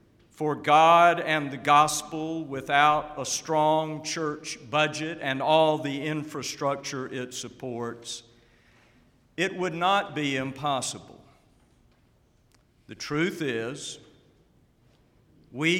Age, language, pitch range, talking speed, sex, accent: 50-69, English, 130-165 Hz, 95 wpm, male, American